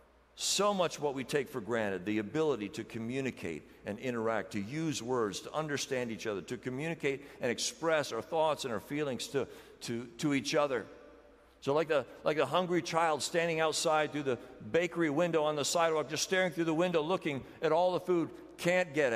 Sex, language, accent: male, English, American